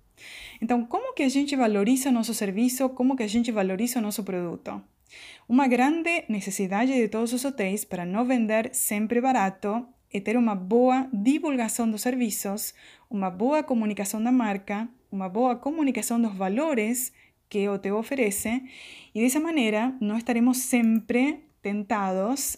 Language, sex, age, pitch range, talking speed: Portuguese, female, 20-39, 205-260 Hz, 150 wpm